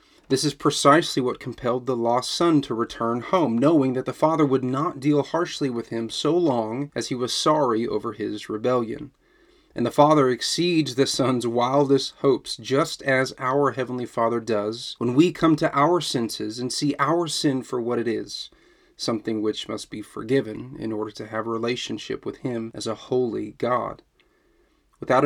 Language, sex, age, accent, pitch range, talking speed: English, male, 30-49, American, 120-145 Hz, 180 wpm